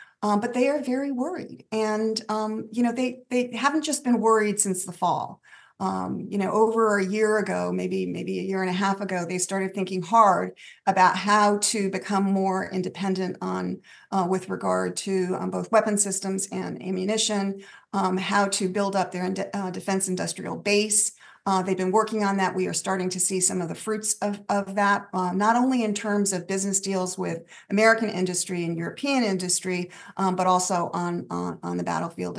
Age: 40-59